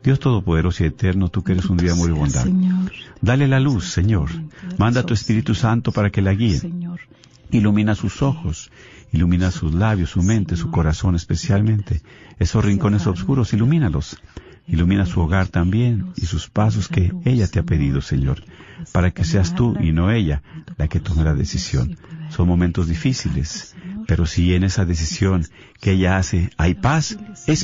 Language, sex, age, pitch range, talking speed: Spanish, male, 50-69, 85-120 Hz, 170 wpm